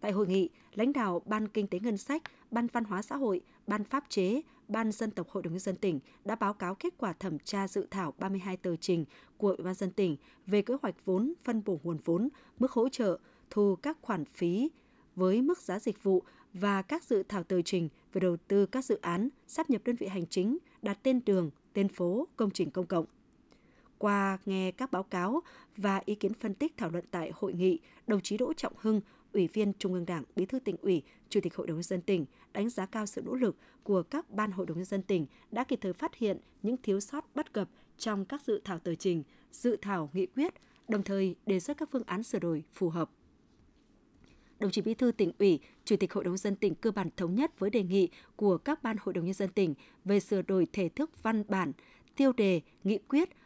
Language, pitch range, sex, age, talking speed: Vietnamese, 185-235 Hz, female, 20-39, 235 wpm